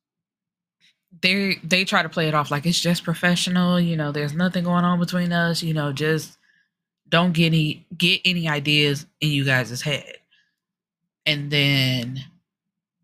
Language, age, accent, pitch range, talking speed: English, 20-39, American, 150-180 Hz, 155 wpm